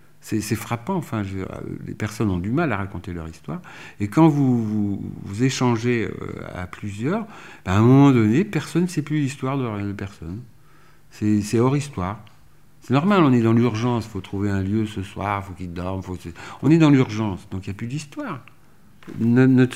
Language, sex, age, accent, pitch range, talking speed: French, male, 60-79, French, 95-135 Hz, 215 wpm